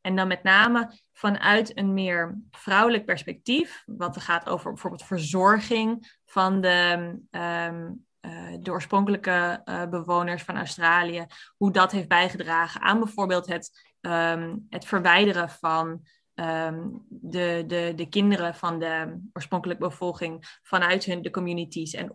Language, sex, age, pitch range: Dutch, female, 20-39, 175-205 Hz